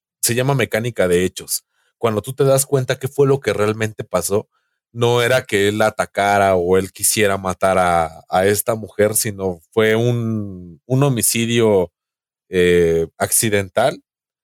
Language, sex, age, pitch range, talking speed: Spanish, male, 30-49, 100-130 Hz, 150 wpm